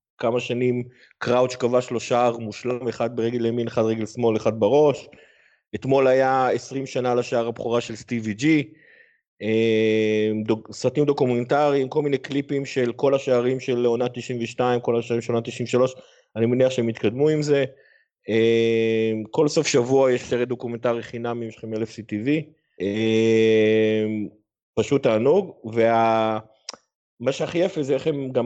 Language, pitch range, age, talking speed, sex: Hebrew, 115-135 Hz, 30-49, 140 wpm, male